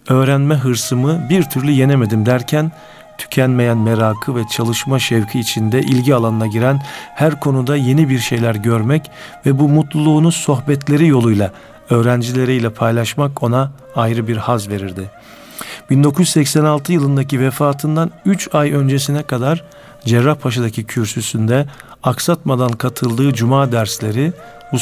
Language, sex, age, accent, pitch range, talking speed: Turkish, male, 50-69, native, 115-145 Hz, 115 wpm